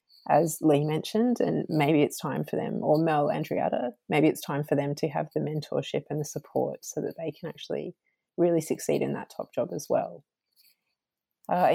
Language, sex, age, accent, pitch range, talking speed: English, female, 20-39, Australian, 160-190 Hz, 195 wpm